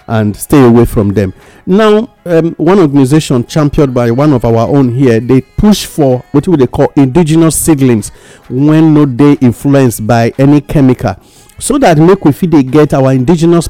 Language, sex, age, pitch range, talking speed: English, male, 50-69, 120-165 Hz, 175 wpm